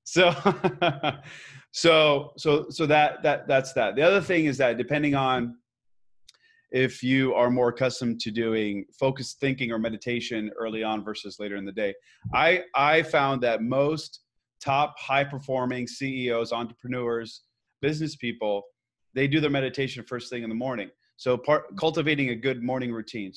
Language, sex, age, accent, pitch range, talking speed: English, male, 30-49, American, 120-145 Hz, 155 wpm